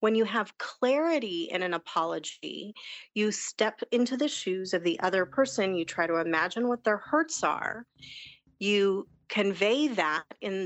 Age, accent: 30-49, American